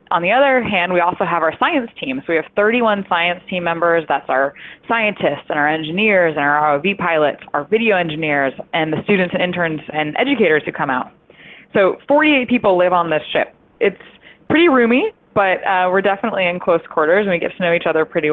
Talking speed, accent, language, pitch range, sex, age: 215 wpm, American, English, 165-210 Hz, female, 20-39